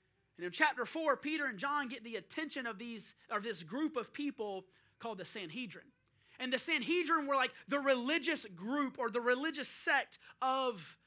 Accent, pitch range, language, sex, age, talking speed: American, 225-300 Hz, English, male, 30-49, 180 wpm